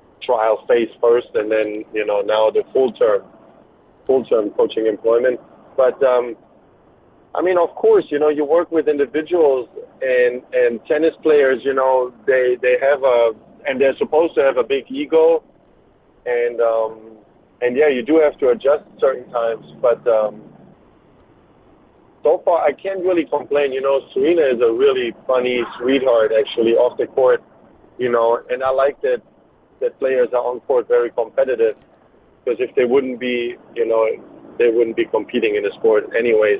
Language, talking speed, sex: English, 170 wpm, male